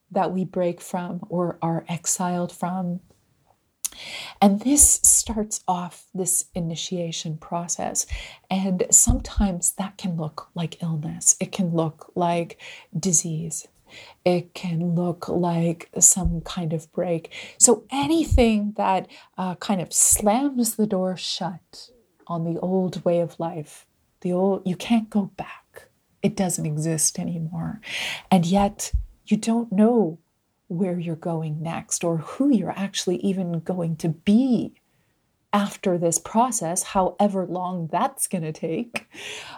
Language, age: English, 30-49